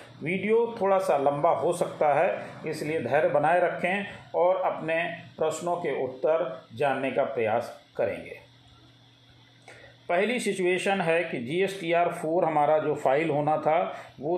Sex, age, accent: male, 40-59, native